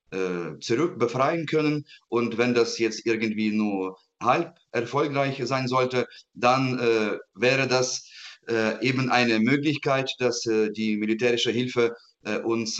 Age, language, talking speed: 30-49, German, 130 wpm